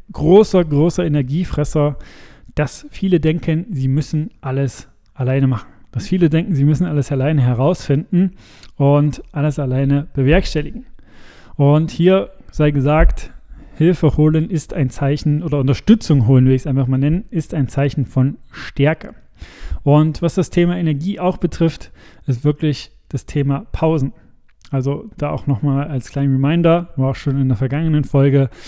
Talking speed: 150 wpm